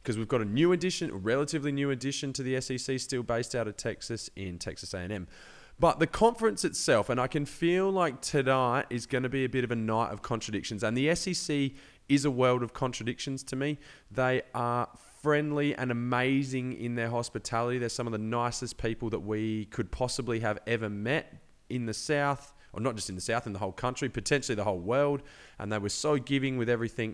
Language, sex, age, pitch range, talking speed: English, male, 20-39, 105-130 Hz, 210 wpm